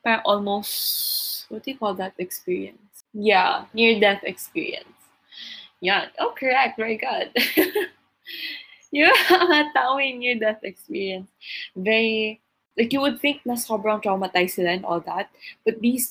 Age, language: 20-39, Filipino